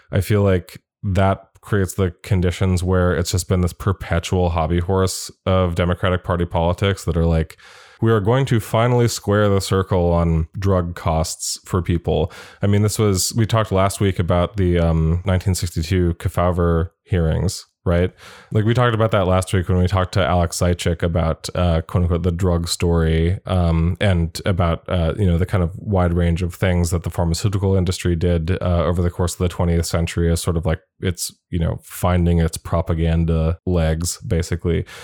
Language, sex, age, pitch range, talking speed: English, male, 20-39, 85-100 Hz, 185 wpm